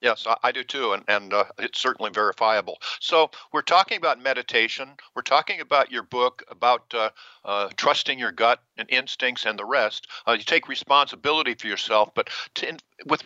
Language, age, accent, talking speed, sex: English, 60-79, American, 175 wpm, male